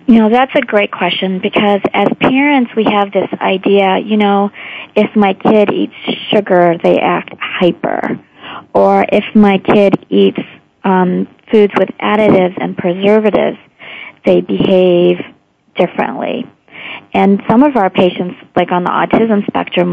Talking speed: 140 wpm